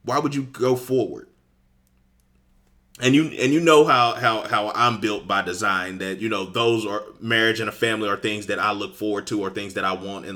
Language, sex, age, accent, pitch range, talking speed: English, male, 30-49, American, 105-130 Hz, 225 wpm